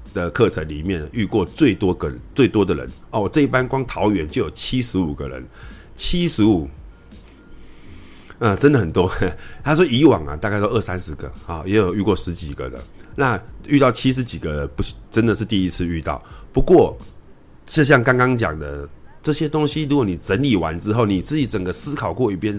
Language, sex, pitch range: Chinese, male, 85-125 Hz